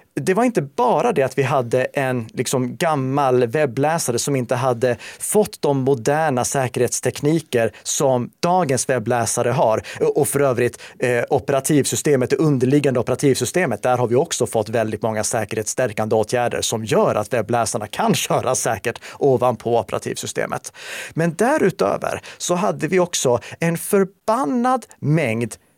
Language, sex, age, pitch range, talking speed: Swedish, male, 30-49, 120-165 Hz, 130 wpm